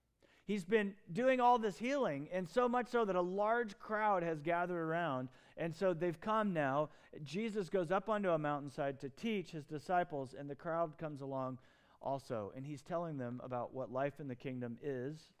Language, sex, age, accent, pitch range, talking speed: English, male, 40-59, American, 140-195 Hz, 190 wpm